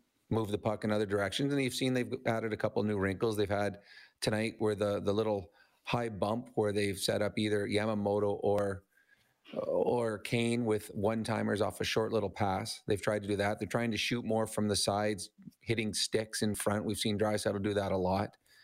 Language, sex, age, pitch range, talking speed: English, male, 40-59, 105-120 Hz, 210 wpm